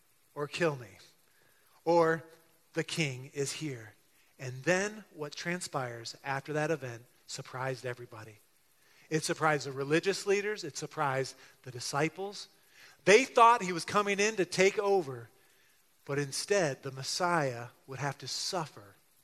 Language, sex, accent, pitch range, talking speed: English, male, American, 140-195 Hz, 135 wpm